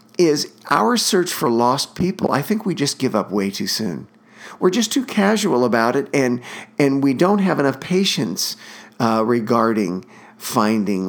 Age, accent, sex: 50-69, American, male